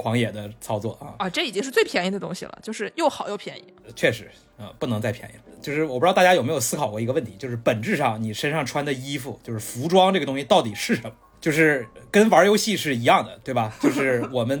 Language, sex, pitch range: Chinese, male, 110-145 Hz